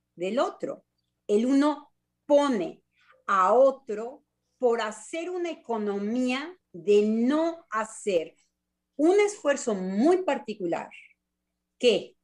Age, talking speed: 40-59, 95 wpm